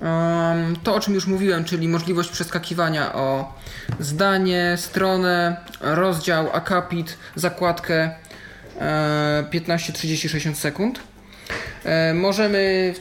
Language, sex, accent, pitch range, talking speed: Polish, male, native, 160-195 Hz, 90 wpm